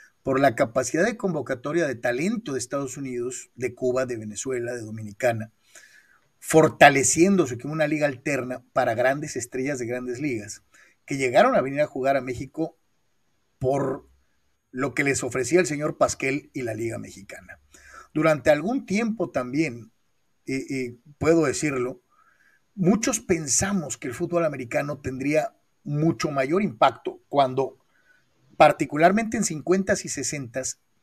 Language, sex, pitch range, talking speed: Spanish, male, 125-165 Hz, 135 wpm